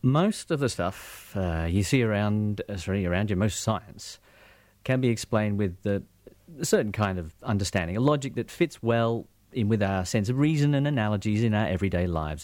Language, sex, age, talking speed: English, male, 40-59, 200 wpm